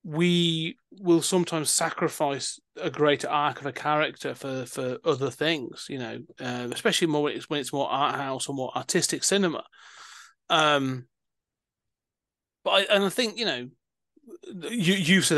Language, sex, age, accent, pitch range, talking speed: English, male, 30-49, British, 135-165 Hz, 160 wpm